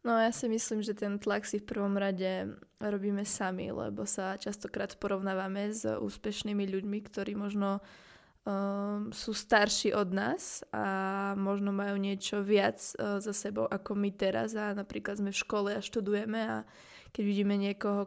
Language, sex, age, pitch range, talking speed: Slovak, female, 20-39, 195-210 Hz, 155 wpm